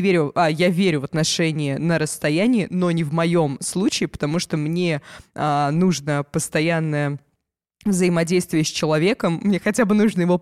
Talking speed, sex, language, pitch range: 140 wpm, female, Russian, 150-180 Hz